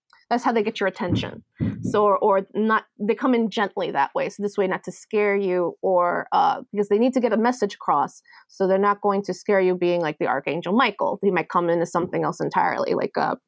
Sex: female